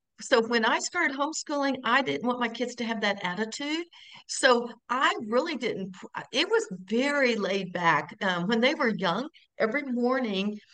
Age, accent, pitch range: 60-79, American, 190-245 Hz